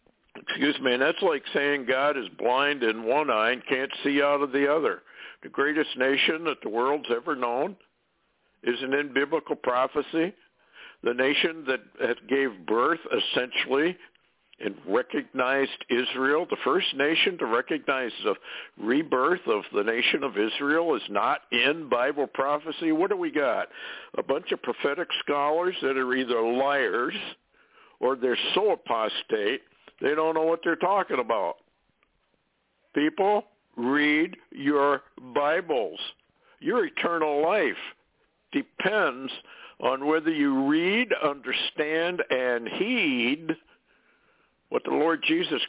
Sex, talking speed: male, 130 wpm